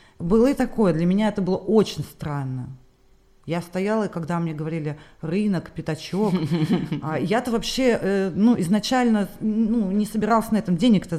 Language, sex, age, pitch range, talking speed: Russian, female, 30-49, 150-195 Hz, 140 wpm